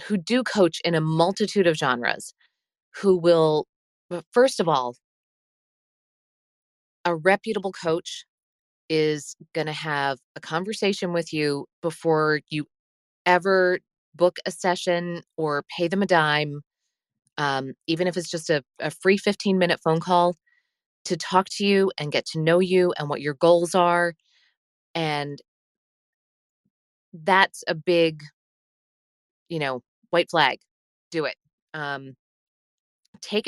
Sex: female